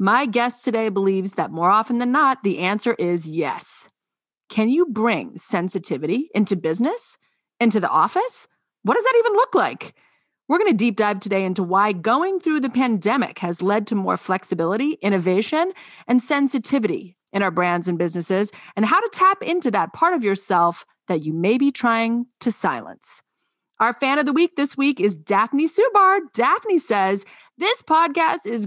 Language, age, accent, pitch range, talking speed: English, 30-49, American, 185-275 Hz, 175 wpm